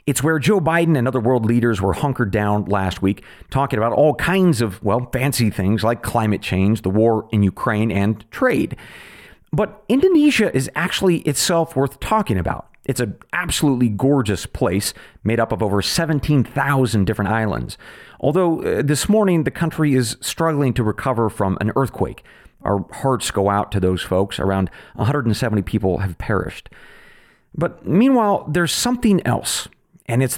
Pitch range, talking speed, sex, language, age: 110-165 Hz, 160 wpm, male, English, 40-59